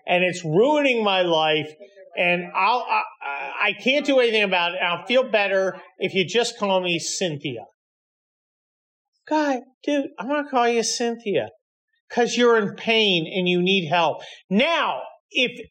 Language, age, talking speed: English, 40-59, 155 wpm